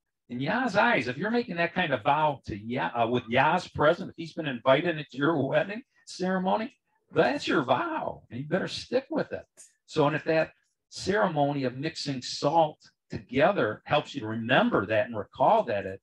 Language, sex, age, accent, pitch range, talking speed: English, male, 50-69, American, 100-140 Hz, 190 wpm